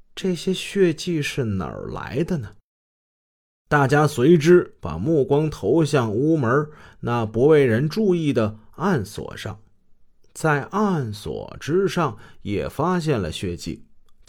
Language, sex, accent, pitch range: Chinese, male, native, 105-170 Hz